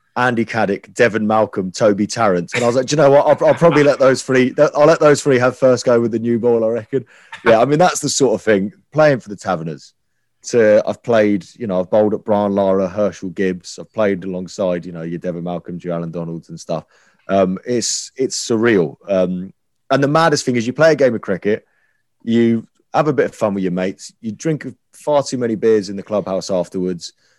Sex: male